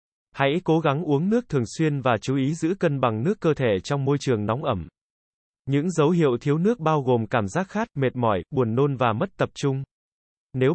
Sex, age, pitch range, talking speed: male, 20-39, 120-155 Hz, 225 wpm